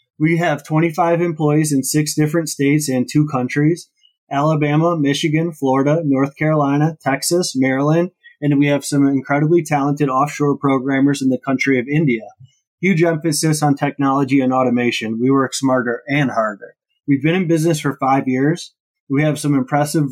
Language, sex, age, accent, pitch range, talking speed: English, male, 20-39, American, 135-155 Hz, 160 wpm